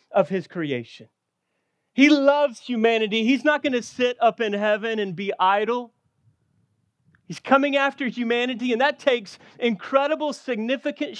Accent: American